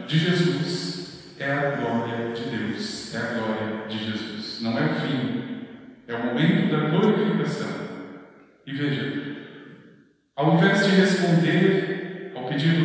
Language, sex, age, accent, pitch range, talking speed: Portuguese, male, 40-59, Brazilian, 135-180 Hz, 135 wpm